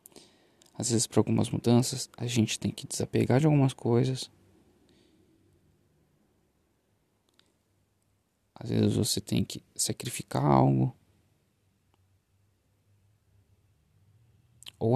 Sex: male